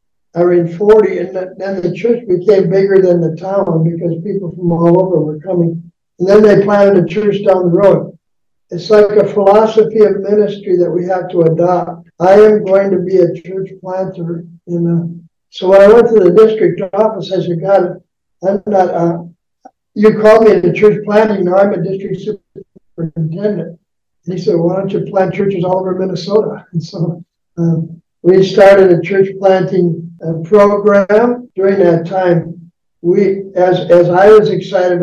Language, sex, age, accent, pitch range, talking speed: English, male, 60-79, American, 175-195 Hz, 180 wpm